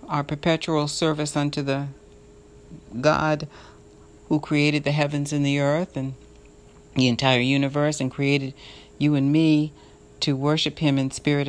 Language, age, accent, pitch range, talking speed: English, 60-79, American, 135-150 Hz, 140 wpm